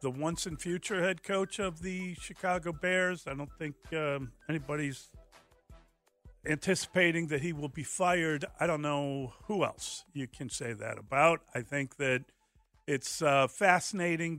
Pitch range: 135-175 Hz